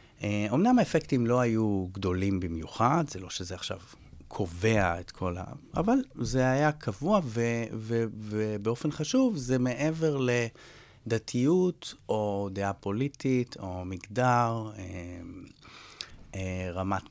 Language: Hebrew